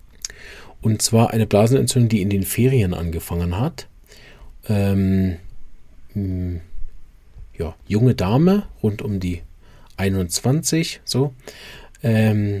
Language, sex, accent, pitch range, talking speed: German, male, German, 95-120 Hz, 95 wpm